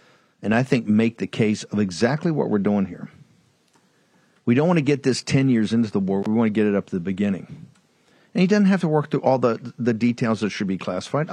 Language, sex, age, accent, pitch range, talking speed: English, male, 50-69, American, 105-140 Hz, 250 wpm